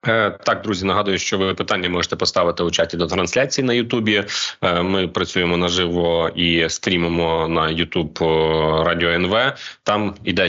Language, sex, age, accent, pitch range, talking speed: Ukrainian, male, 30-49, native, 85-105 Hz, 145 wpm